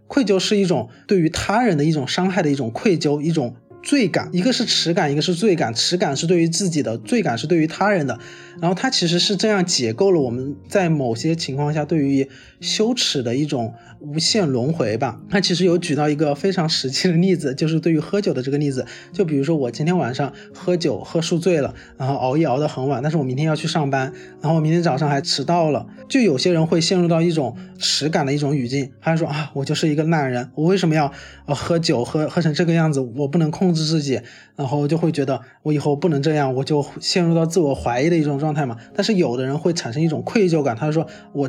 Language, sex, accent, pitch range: Chinese, male, native, 140-180 Hz